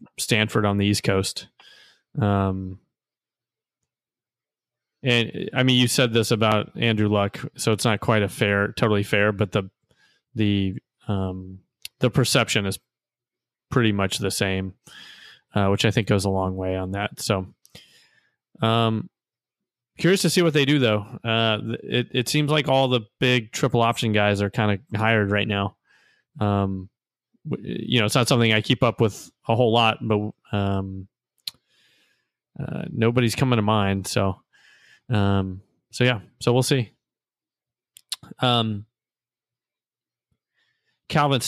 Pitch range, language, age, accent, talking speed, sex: 105-125 Hz, English, 20-39, American, 145 wpm, male